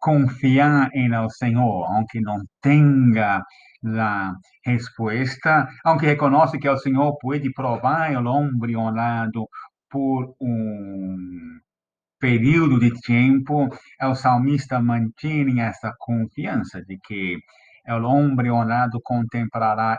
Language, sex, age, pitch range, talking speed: Spanish, male, 50-69, 105-135 Hz, 105 wpm